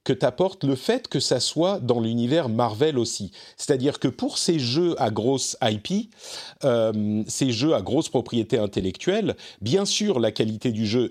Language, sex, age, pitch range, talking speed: French, male, 40-59, 105-155 Hz, 175 wpm